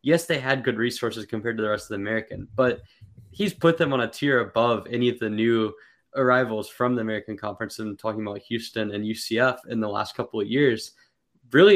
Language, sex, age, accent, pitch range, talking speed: English, male, 10-29, American, 110-135 Hz, 215 wpm